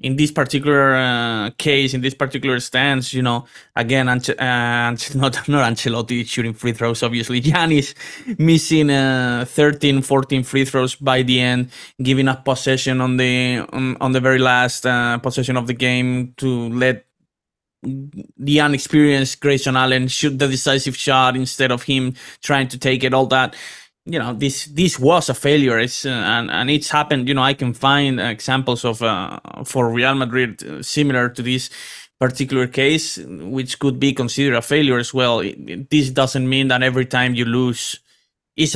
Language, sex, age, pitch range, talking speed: English, male, 20-39, 125-140 Hz, 175 wpm